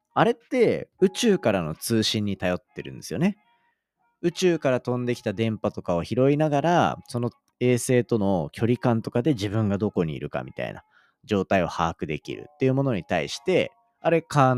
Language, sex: Japanese, male